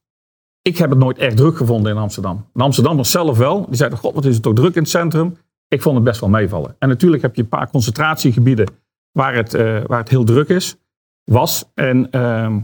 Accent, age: Dutch, 50-69